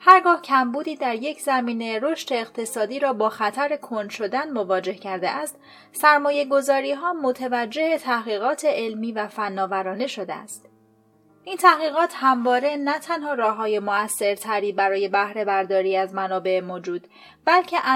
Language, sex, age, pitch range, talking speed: Persian, female, 30-49, 205-285 Hz, 130 wpm